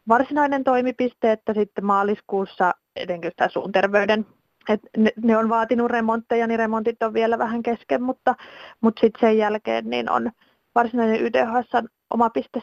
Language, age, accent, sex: Finnish, 30-49, native, female